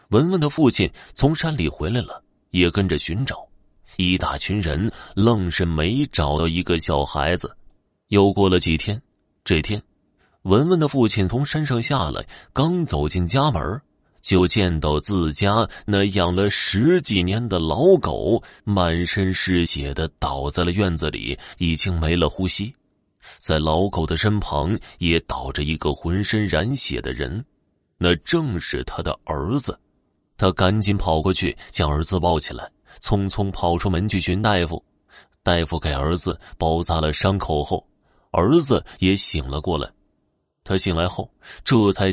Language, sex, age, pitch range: Chinese, male, 30-49, 80-105 Hz